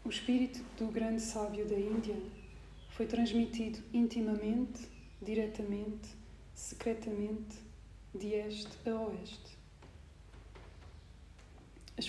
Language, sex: Portuguese, female